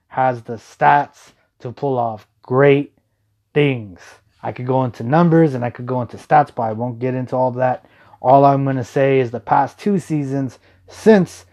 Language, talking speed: English, 195 wpm